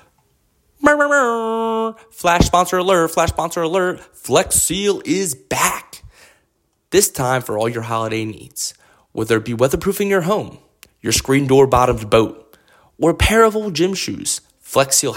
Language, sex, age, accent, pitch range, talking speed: English, male, 20-39, American, 110-165 Hz, 145 wpm